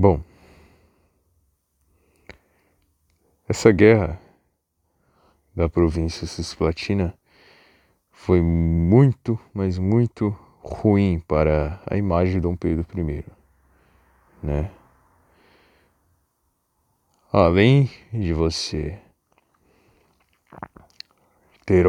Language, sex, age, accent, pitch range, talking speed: Portuguese, male, 20-39, Brazilian, 80-100 Hz, 65 wpm